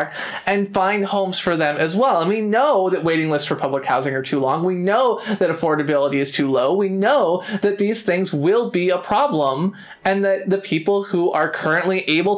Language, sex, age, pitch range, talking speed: English, male, 20-39, 175-225 Hz, 210 wpm